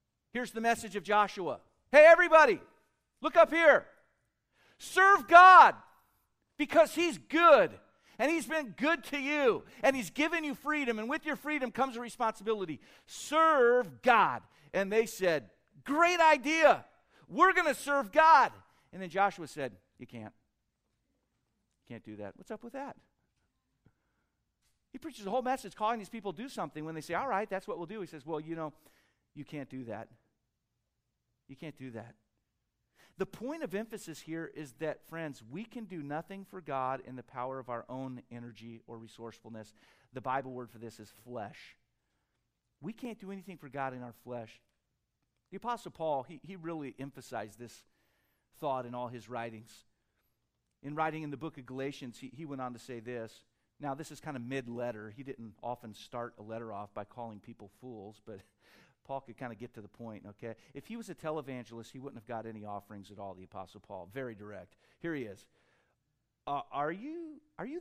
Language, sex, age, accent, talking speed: English, male, 50-69, American, 185 wpm